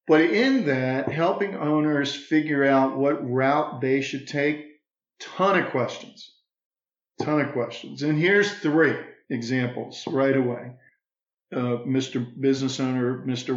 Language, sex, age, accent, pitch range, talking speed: English, male, 50-69, American, 125-150 Hz, 130 wpm